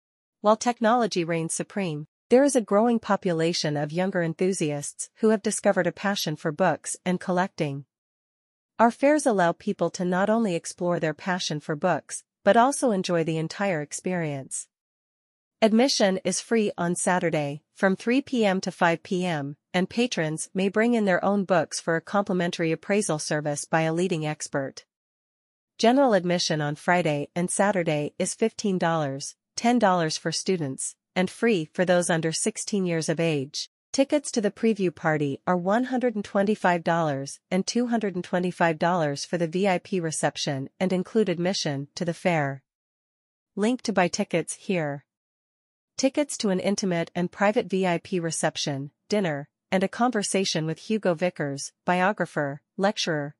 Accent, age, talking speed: American, 40-59, 145 wpm